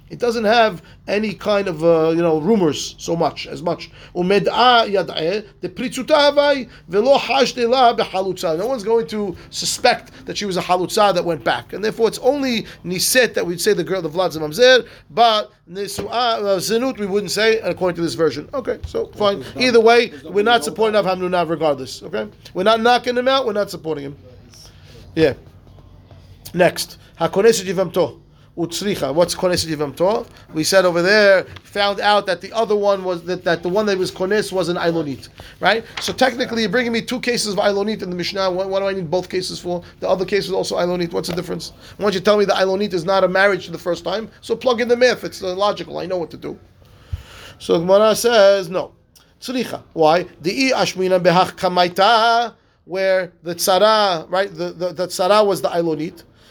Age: 30-49